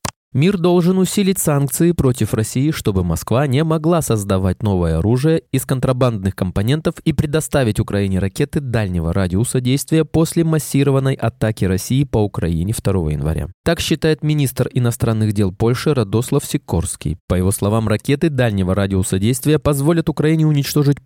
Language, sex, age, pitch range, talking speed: Russian, male, 20-39, 105-145 Hz, 140 wpm